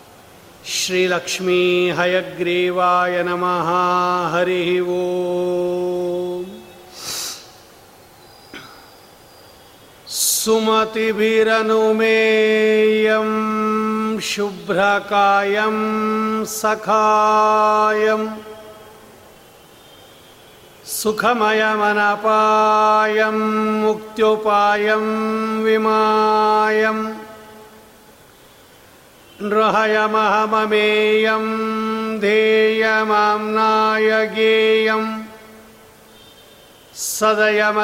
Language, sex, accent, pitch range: Kannada, male, native, 215-220 Hz